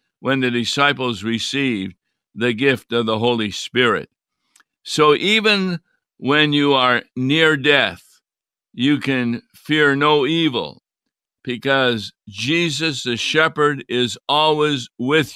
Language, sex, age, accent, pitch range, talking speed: English, male, 50-69, American, 125-150 Hz, 115 wpm